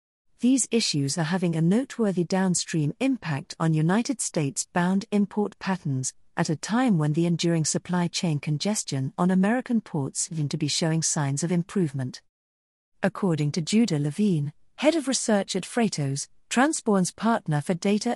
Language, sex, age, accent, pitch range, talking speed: English, female, 40-59, British, 150-205 Hz, 150 wpm